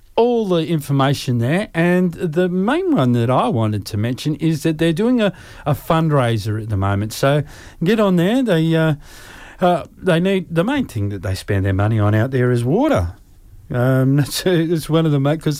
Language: English